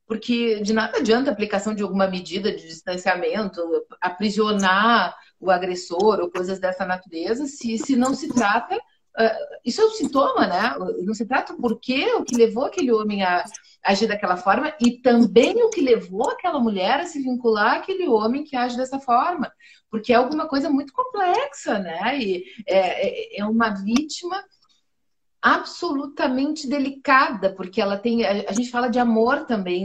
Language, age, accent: Portuguese, 40-59, Brazilian